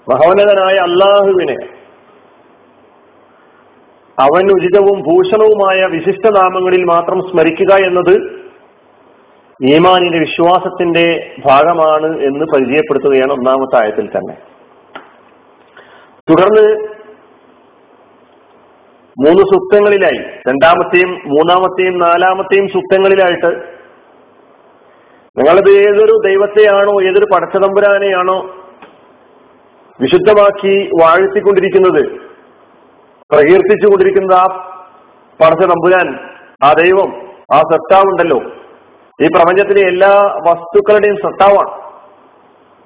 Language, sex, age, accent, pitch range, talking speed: Malayalam, male, 40-59, native, 180-215 Hz, 60 wpm